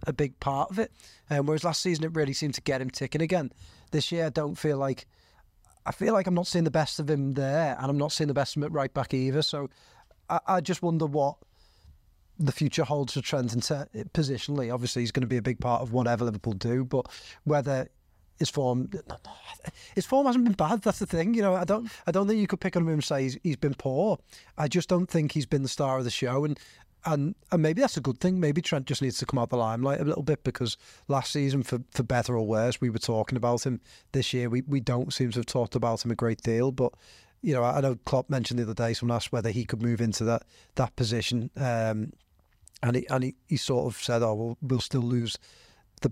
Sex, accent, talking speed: male, British, 255 wpm